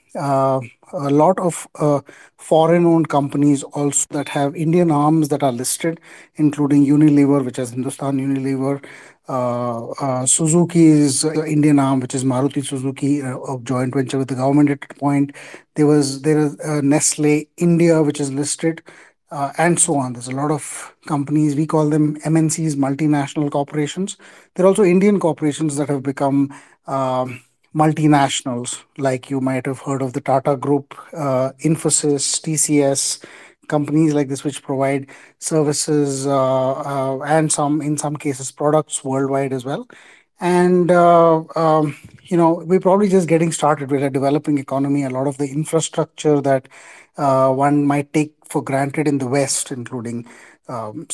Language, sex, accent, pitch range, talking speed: English, male, Indian, 135-155 Hz, 160 wpm